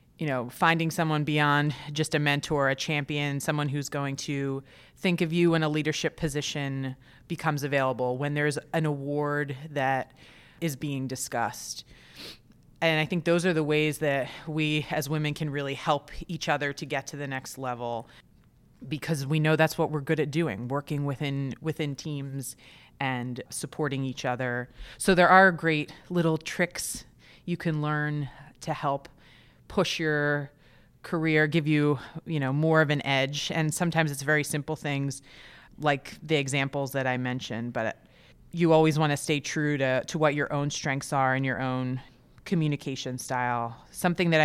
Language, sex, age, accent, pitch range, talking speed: English, female, 30-49, American, 135-155 Hz, 170 wpm